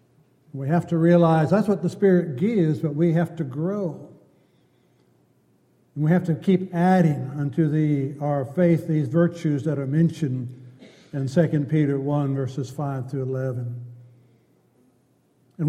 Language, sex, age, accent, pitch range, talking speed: English, male, 60-79, American, 140-185 Hz, 145 wpm